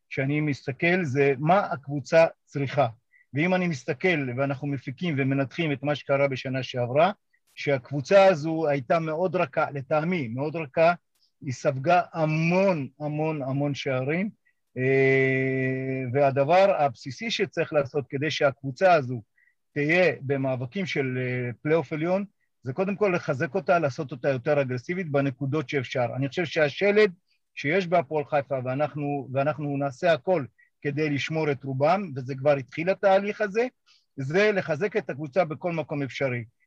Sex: male